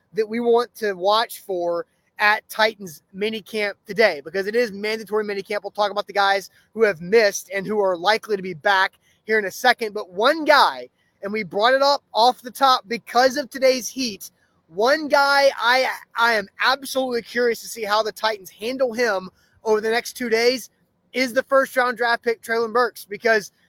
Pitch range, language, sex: 200-240 Hz, English, male